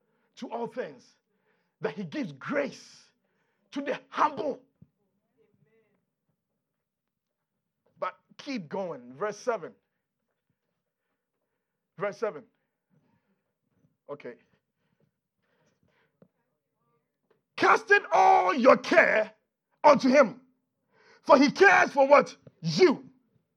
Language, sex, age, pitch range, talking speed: English, male, 50-69, 225-375 Hz, 75 wpm